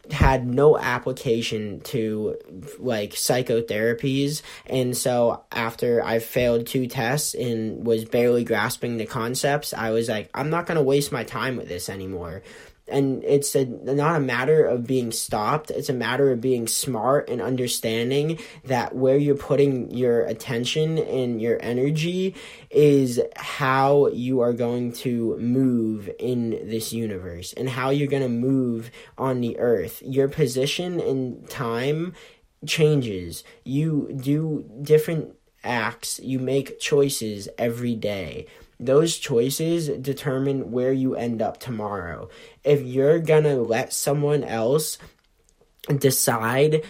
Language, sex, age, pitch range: English, male, 10-29, 115-140 Hz